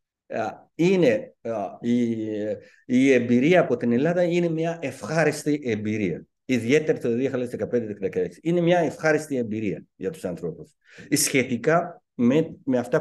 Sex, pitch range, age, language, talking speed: male, 120-160 Hz, 50-69, Greek, 125 wpm